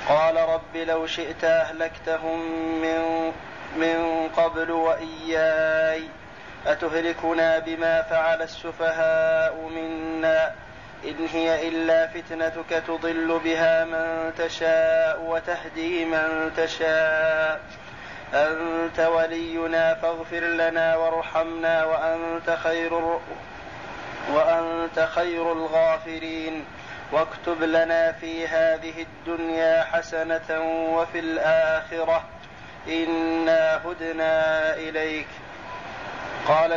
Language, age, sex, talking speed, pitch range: Arabic, 30-49, male, 75 wpm, 160-165 Hz